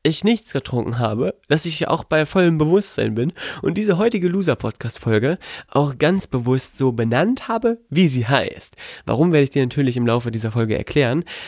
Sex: male